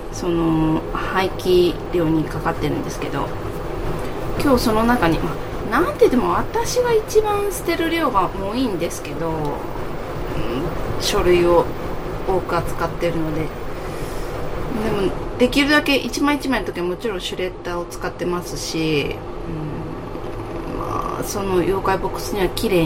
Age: 20-39